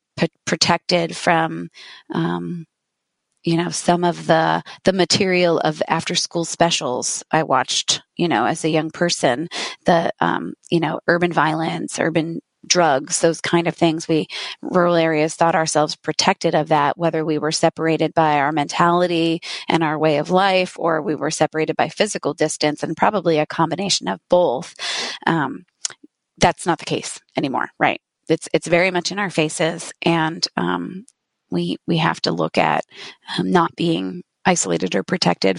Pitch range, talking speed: 155-175 Hz, 160 wpm